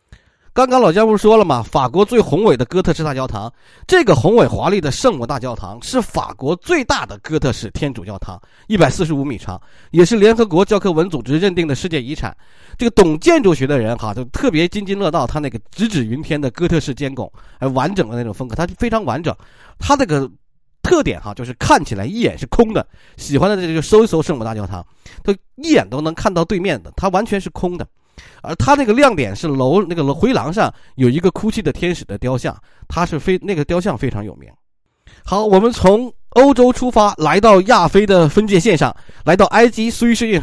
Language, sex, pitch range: Chinese, male, 125-200 Hz